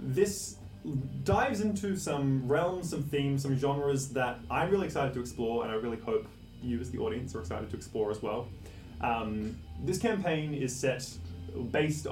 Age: 20-39